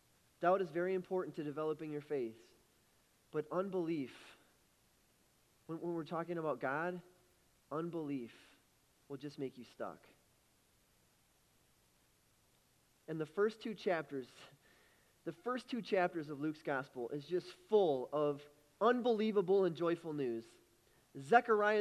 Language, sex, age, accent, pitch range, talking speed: English, male, 30-49, American, 170-235 Hz, 115 wpm